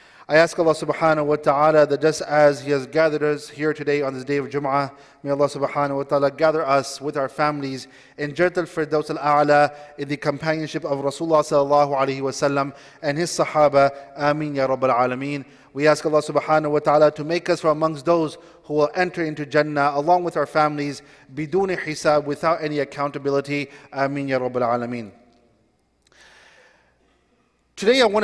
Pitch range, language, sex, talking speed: 145-185 Hz, English, male, 175 wpm